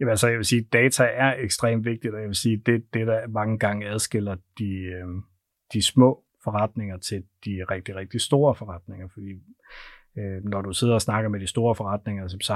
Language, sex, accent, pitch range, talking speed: Danish, male, native, 95-110 Hz, 200 wpm